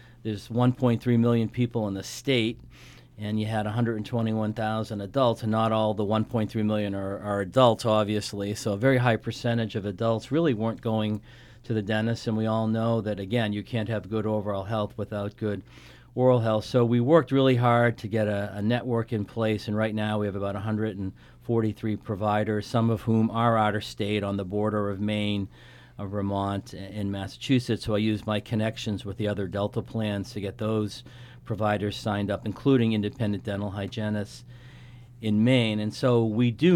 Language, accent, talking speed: English, American, 185 wpm